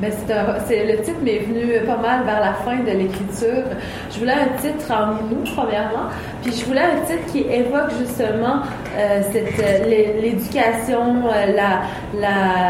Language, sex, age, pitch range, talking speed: French, female, 30-49, 205-250 Hz, 170 wpm